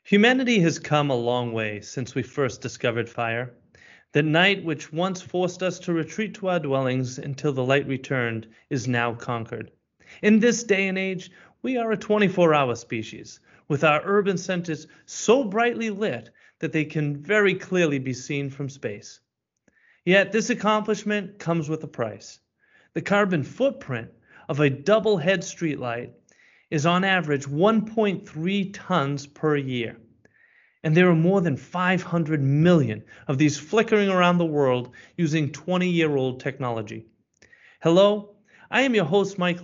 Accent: American